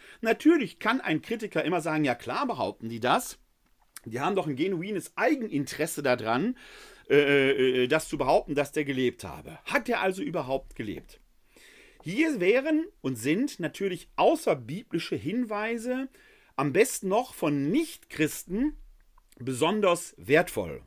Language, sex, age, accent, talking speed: German, male, 40-59, German, 130 wpm